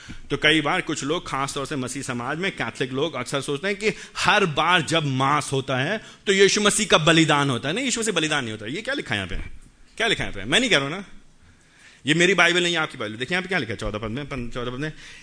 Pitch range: 110-160 Hz